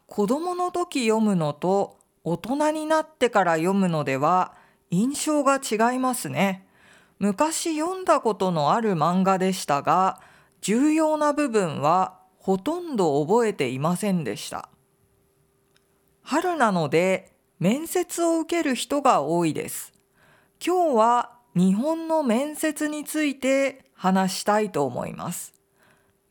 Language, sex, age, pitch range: Japanese, female, 40-59, 185-290 Hz